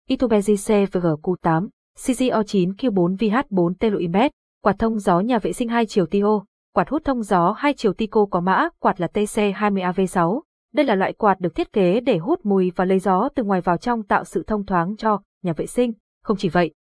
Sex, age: female, 20-39